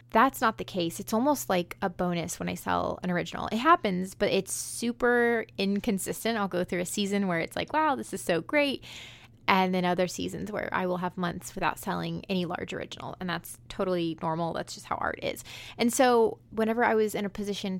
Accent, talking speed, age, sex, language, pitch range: American, 215 wpm, 20-39, female, English, 175-215 Hz